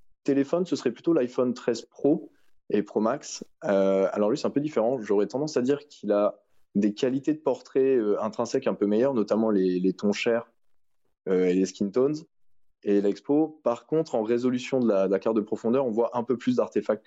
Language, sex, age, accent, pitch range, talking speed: French, male, 20-39, French, 100-130 Hz, 210 wpm